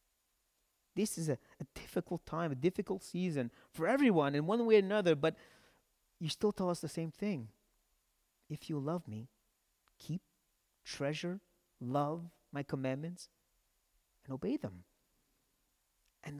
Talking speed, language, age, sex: 135 wpm, English, 30-49, male